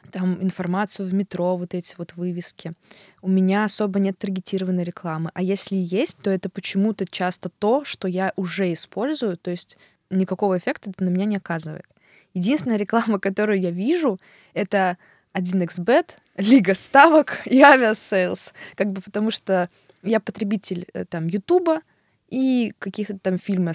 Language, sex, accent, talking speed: Russian, female, native, 145 wpm